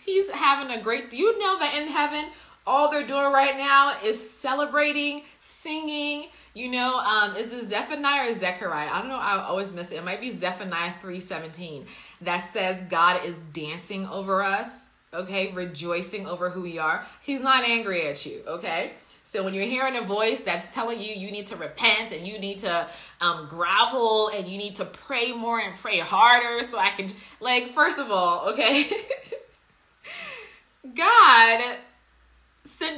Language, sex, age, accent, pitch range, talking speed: English, female, 20-39, American, 190-255 Hz, 170 wpm